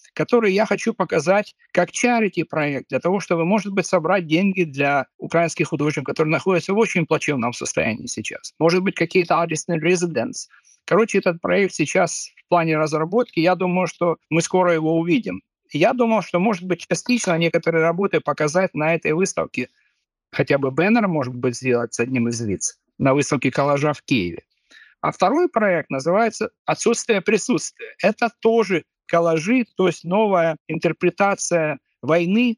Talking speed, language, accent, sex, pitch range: 155 wpm, Ukrainian, native, male, 145-190 Hz